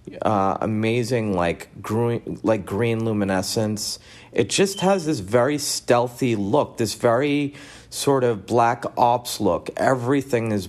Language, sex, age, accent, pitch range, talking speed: English, male, 40-59, American, 100-125 Hz, 130 wpm